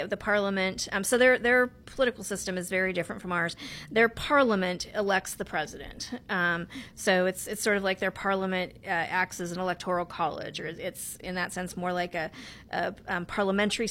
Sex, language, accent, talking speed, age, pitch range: female, English, American, 190 wpm, 40-59, 180-215 Hz